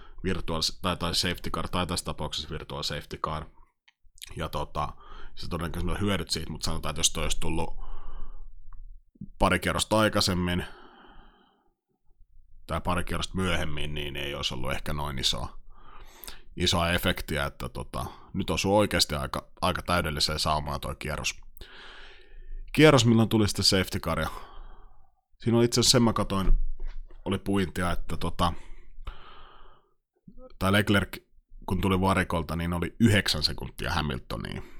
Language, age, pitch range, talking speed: Finnish, 30-49, 80-95 Hz, 140 wpm